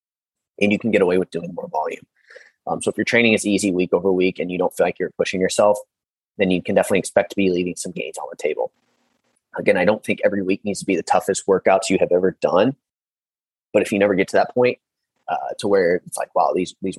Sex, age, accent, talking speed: male, 30-49, American, 255 wpm